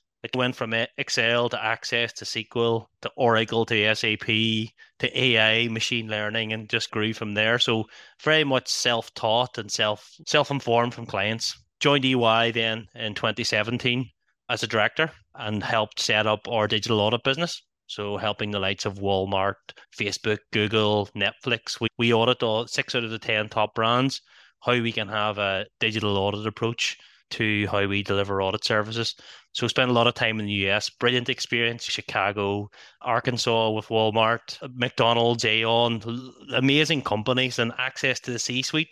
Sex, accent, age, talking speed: male, Irish, 20-39, 160 wpm